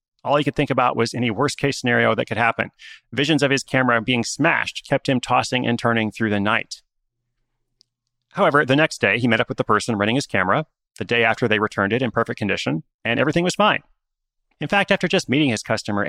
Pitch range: 115-140 Hz